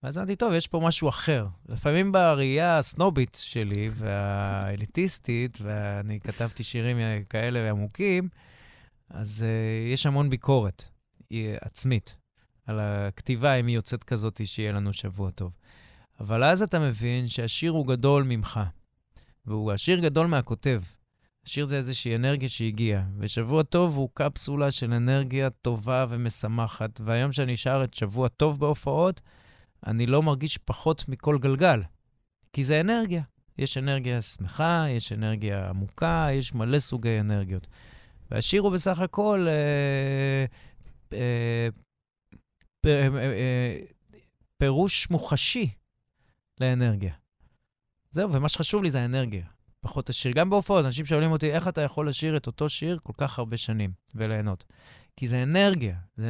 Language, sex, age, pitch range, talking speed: Hebrew, male, 20-39, 110-145 Hz, 135 wpm